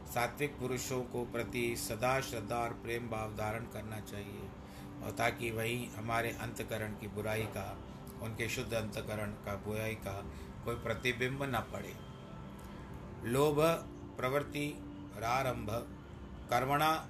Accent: native